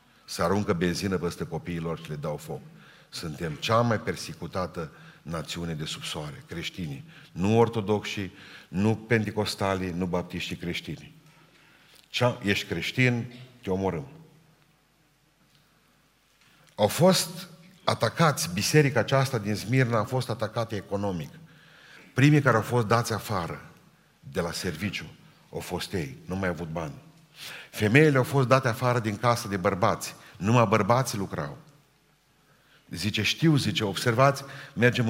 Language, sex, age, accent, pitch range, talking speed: Romanian, male, 50-69, native, 100-135 Hz, 130 wpm